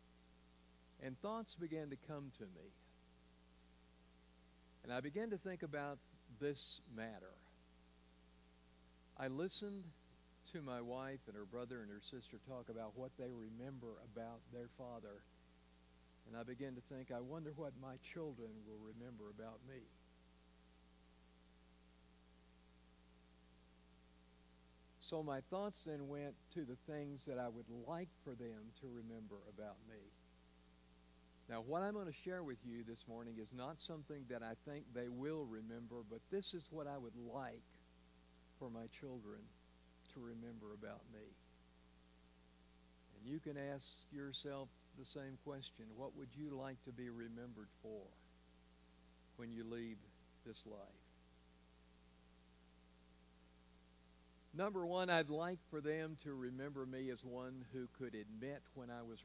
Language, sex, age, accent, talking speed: English, male, 60-79, American, 140 wpm